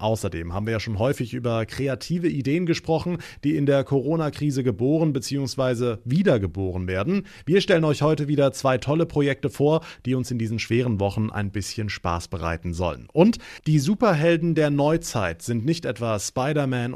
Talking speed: 165 wpm